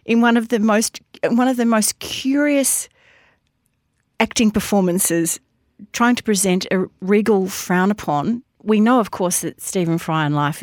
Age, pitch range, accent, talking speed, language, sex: 40-59, 160-205 Hz, Australian, 160 wpm, English, female